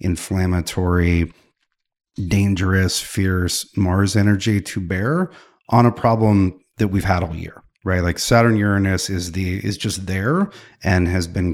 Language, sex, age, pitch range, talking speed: English, male, 30-49, 90-110 Hz, 140 wpm